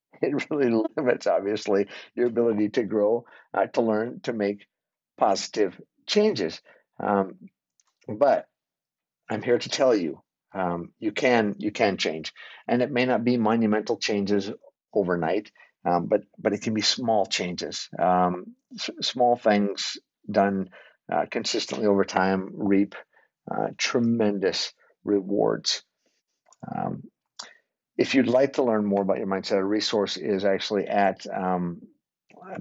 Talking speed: 135 wpm